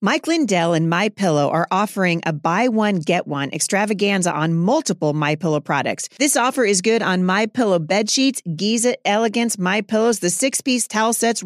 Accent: American